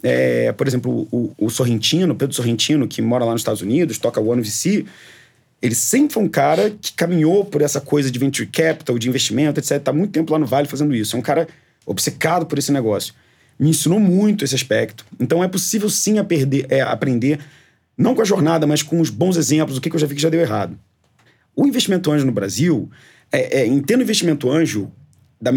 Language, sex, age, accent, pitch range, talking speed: Portuguese, male, 30-49, Brazilian, 125-160 Hz, 200 wpm